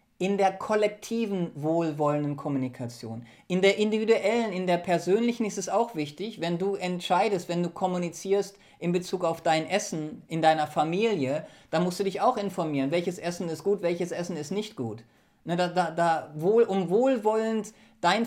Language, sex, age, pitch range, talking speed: German, male, 40-59, 150-195 Hz, 165 wpm